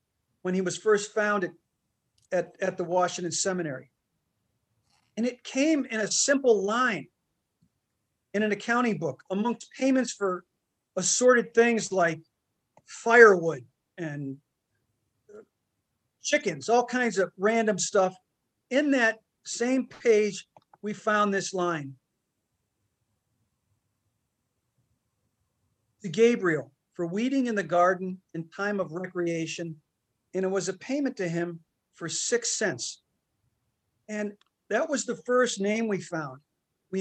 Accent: American